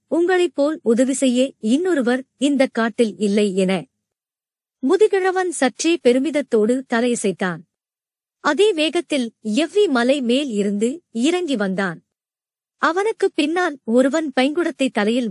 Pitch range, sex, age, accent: 220-305 Hz, male, 50-69, native